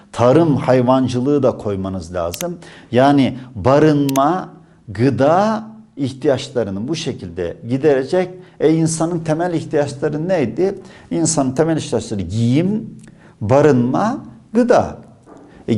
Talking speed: 90 wpm